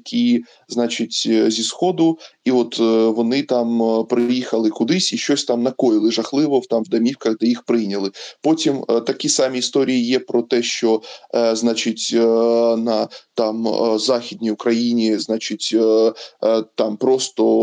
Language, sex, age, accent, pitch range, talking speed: Ukrainian, male, 20-39, native, 115-145 Hz, 125 wpm